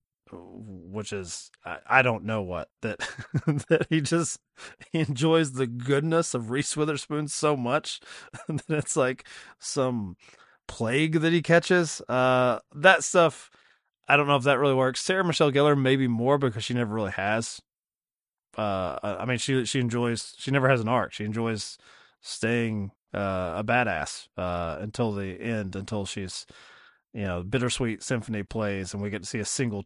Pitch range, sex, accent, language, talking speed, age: 110-145 Hz, male, American, English, 170 wpm, 30-49